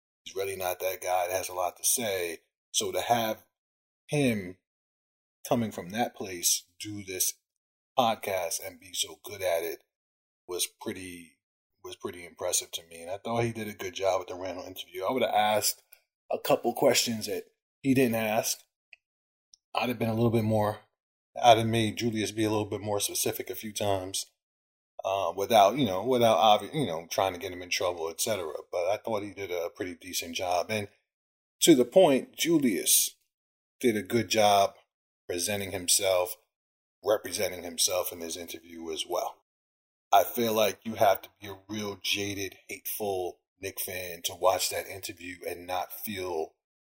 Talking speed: 180 wpm